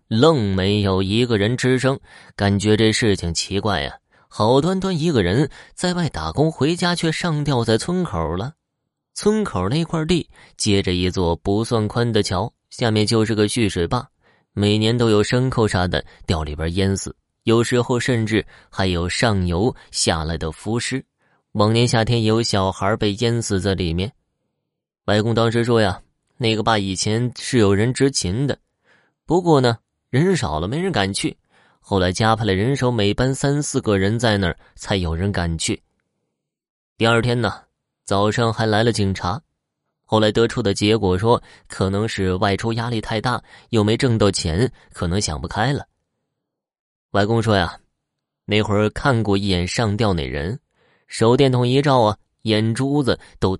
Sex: male